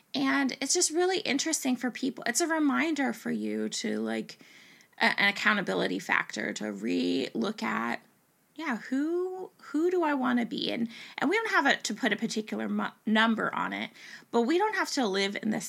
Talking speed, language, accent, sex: 195 wpm, English, American, female